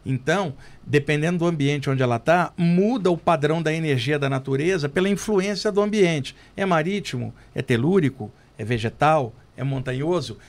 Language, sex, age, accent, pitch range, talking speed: Portuguese, male, 50-69, Brazilian, 140-170 Hz, 150 wpm